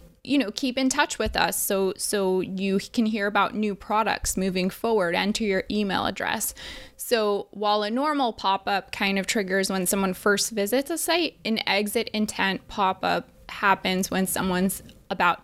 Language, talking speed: English, 165 wpm